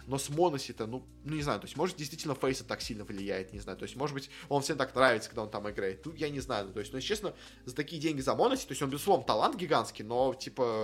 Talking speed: 295 wpm